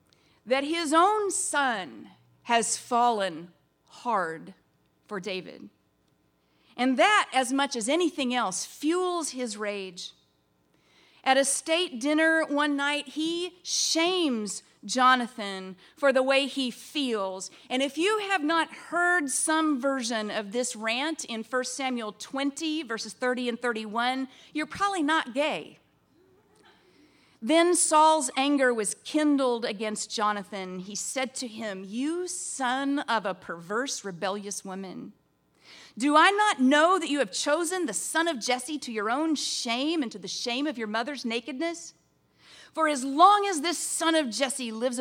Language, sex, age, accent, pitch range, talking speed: English, female, 40-59, American, 205-300 Hz, 145 wpm